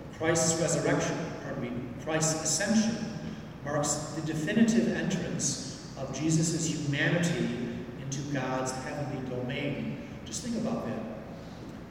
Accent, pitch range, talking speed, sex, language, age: American, 130-165 Hz, 115 wpm, male, English, 40-59